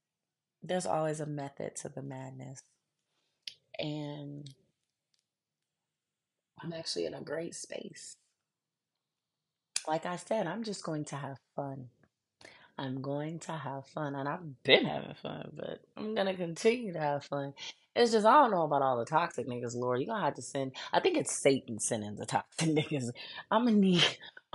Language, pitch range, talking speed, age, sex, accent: English, 130-175 Hz, 165 wpm, 20-39, female, American